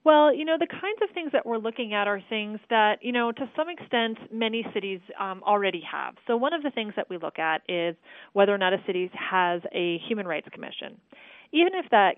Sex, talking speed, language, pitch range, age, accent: female, 230 wpm, English, 170-215 Hz, 30-49, American